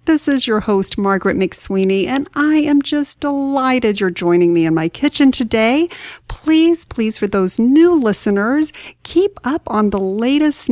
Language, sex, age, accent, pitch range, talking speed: English, female, 50-69, American, 200-275 Hz, 160 wpm